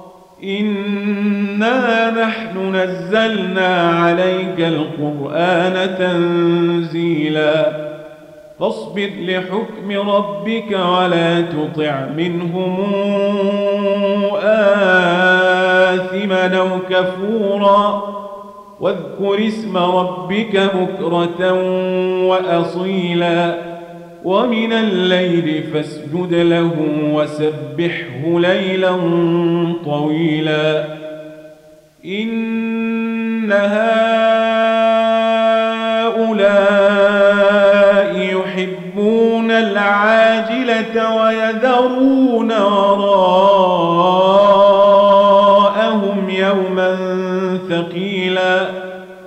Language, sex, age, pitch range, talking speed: Arabic, male, 40-59, 170-200 Hz, 45 wpm